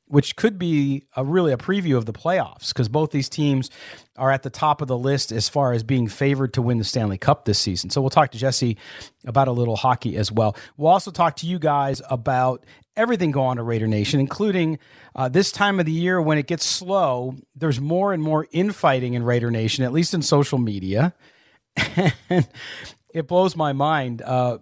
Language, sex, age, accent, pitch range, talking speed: English, male, 40-59, American, 125-165 Hz, 210 wpm